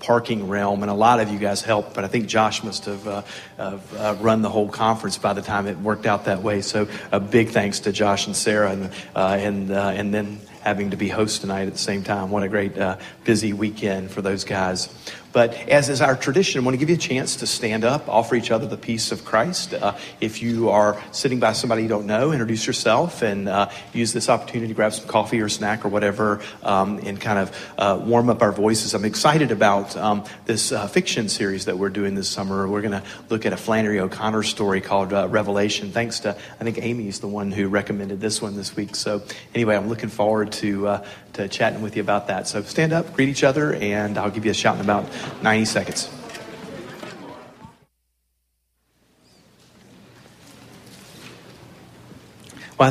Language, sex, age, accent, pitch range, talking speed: English, male, 40-59, American, 100-115 Hz, 210 wpm